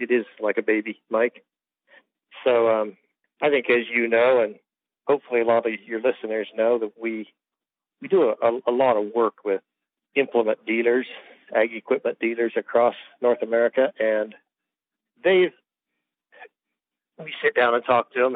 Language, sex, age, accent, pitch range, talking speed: English, male, 50-69, American, 105-120 Hz, 155 wpm